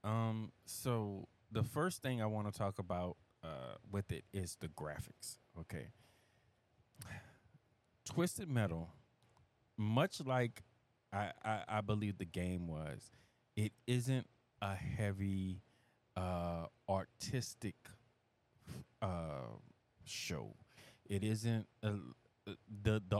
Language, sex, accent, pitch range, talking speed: English, male, American, 95-115 Hz, 105 wpm